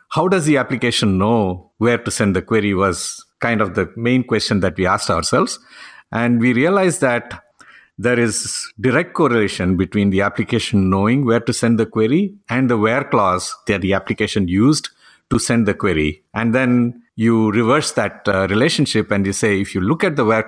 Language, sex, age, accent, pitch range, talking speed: English, male, 50-69, Indian, 95-120 Hz, 190 wpm